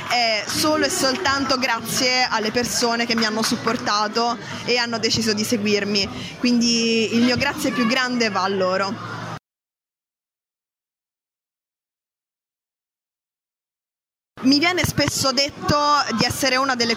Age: 20-39